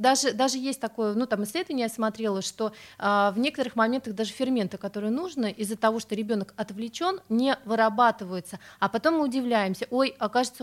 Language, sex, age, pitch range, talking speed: Russian, female, 30-49, 200-250 Hz, 175 wpm